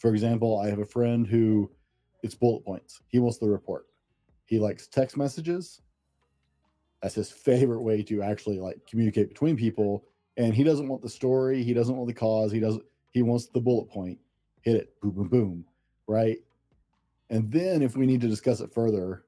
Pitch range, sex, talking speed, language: 105-130 Hz, male, 190 wpm, English